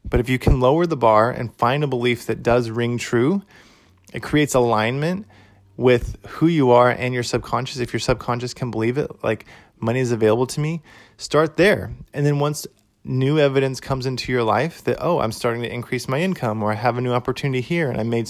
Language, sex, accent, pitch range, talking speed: English, male, American, 115-140 Hz, 215 wpm